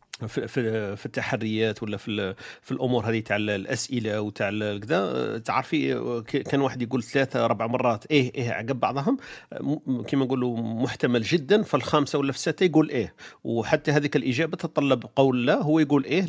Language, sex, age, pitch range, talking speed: Arabic, male, 40-59, 115-140 Hz, 160 wpm